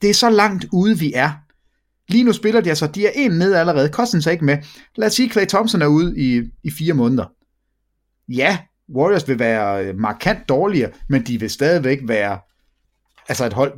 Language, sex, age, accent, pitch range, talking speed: English, male, 30-49, Danish, 130-185 Hz, 200 wpm